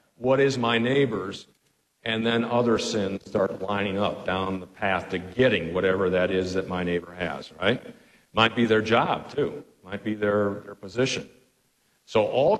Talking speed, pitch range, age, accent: 170 wpm, 110-165 Hz, 50-69, American